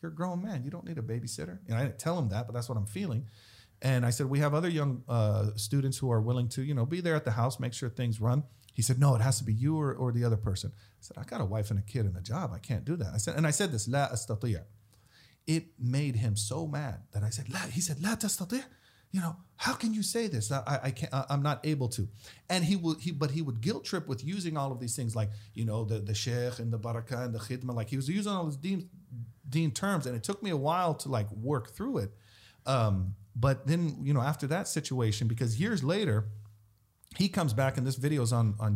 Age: 40-59